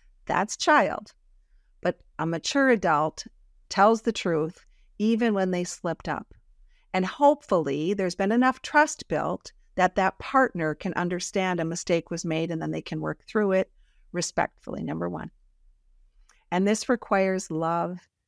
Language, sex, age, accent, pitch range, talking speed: English, female, 50-69, American, 165-210 Hz, 145 wpm